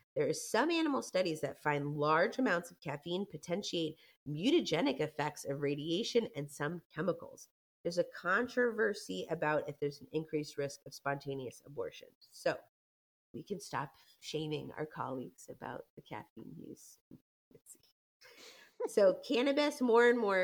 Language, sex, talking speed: English, female, 140 wpm